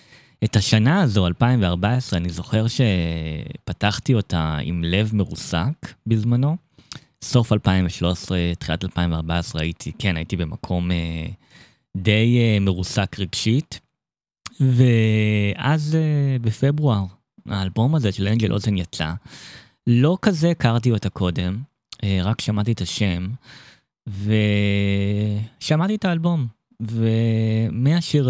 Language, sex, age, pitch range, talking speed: Hebrew, male, 20-39, 95-120 Hz, 95 wpm